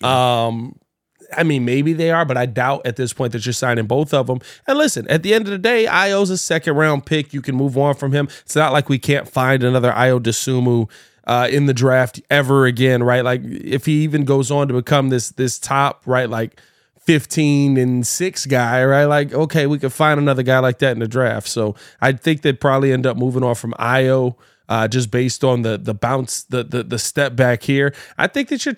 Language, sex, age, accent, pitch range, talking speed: English, male, 20-39, American, 125-150 Hz, 230 wpm